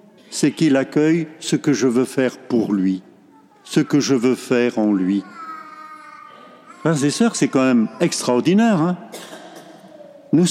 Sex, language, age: male, French, 70-89